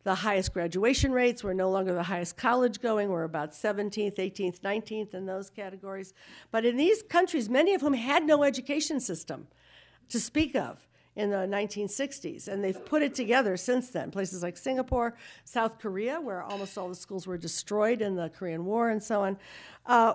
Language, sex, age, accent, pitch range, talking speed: English, female, 50-69, American, 195-250 Hz, 190 wpm